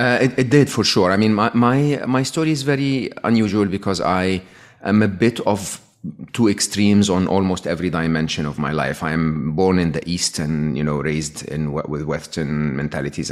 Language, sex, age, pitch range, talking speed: English, male, 40-59, 75-95 Hz, 200 wpm